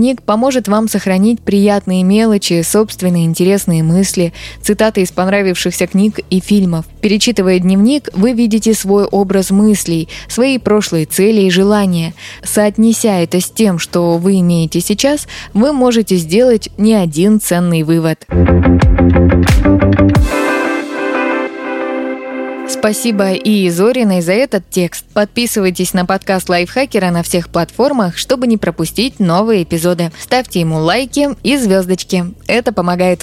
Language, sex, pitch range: Russian, female, 170-215 Hz